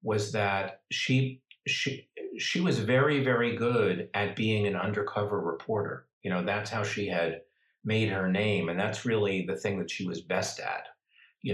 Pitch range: 105-125 Hz